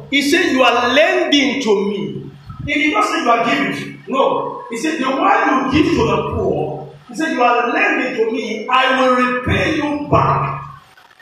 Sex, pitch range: male, 230-320 Hz